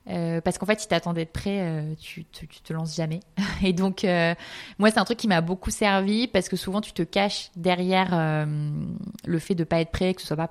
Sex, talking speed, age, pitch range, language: female, 250 wpm, 20-39, 165-190 Hz, French